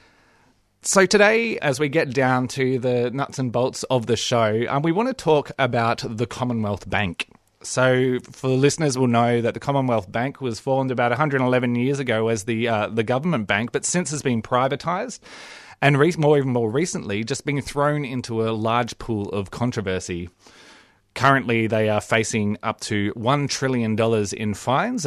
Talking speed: 190 wpm